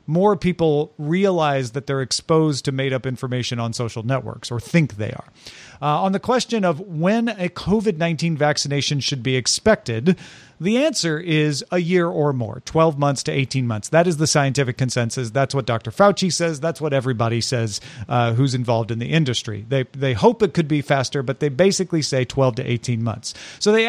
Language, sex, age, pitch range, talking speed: English, male, 40-59, 130-185 Hz, 195 wpm